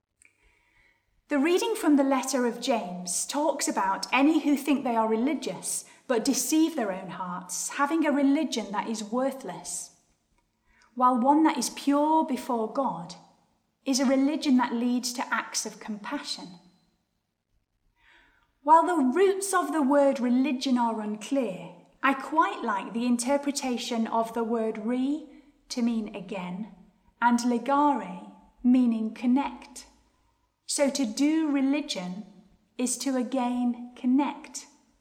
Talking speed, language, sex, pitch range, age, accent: 130 wpm, English, female, 230-285 Hz, 30-49, British